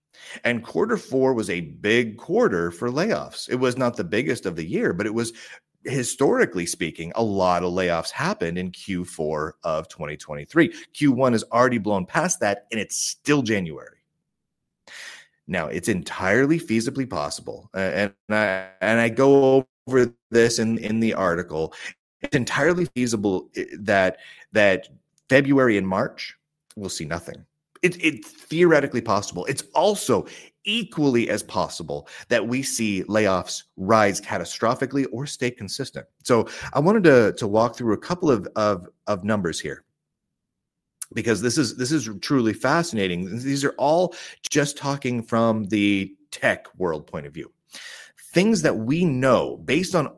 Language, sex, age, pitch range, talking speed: English, male, 30-49, 100-135 Hz, 150 wpm